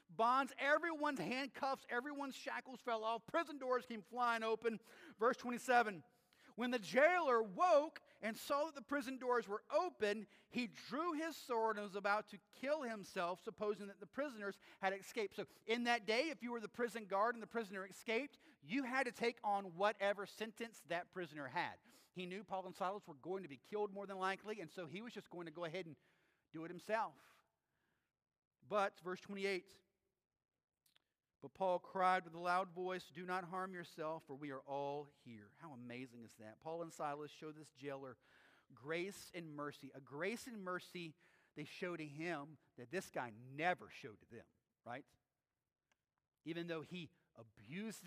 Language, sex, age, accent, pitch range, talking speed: English, male, 40-59, American, 165-225 Hz, 180 wpm